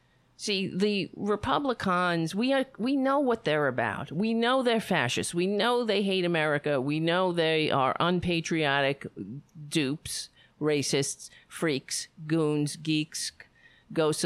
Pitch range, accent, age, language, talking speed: 145-215 Hz, American, 50-69, English, 125 wpm